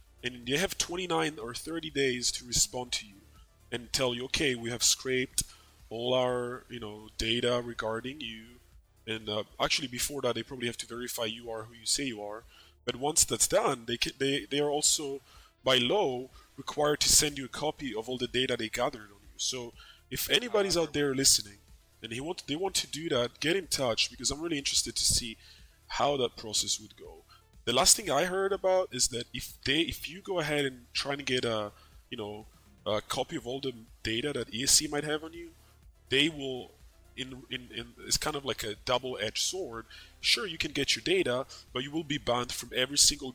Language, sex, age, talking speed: English, male, 20-39, 215 wpm